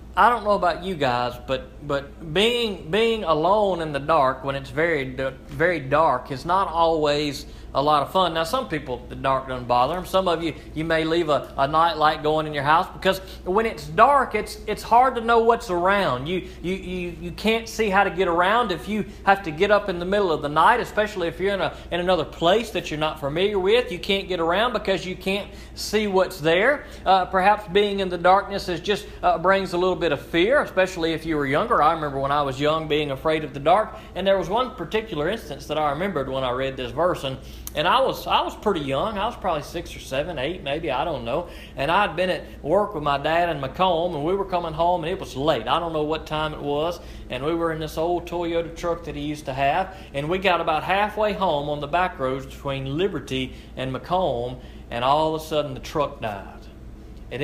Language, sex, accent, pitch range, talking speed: English, male, American, 145-190 Hz, 240 wpm